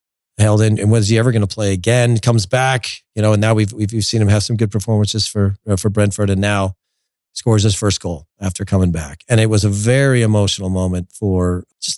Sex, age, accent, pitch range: male, 40-59, American, 95-115 Hz